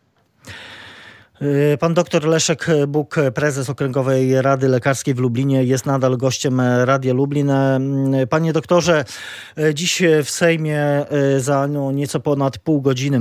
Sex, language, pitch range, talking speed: male, Polish, 125-145 Hz, 120 wpm